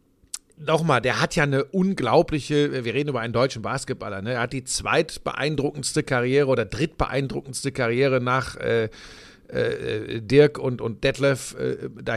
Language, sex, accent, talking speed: German, male, German, 150 wpm